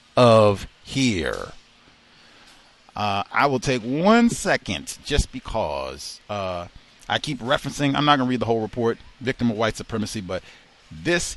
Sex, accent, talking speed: male, American, 140 wpm